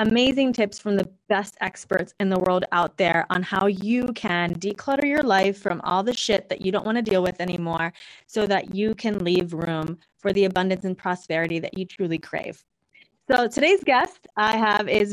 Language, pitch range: English, 180-225 Hz